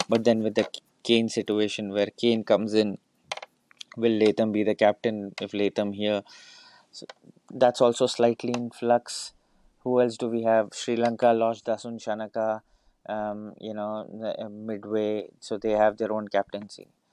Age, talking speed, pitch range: 30-49, 155 wpm, 105-115 Hz